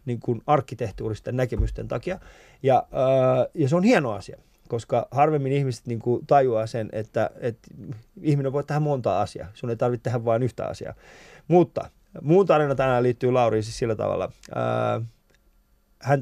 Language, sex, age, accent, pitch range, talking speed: Finnish, male, 20-39, native, 115-140 Hz, 165 wpm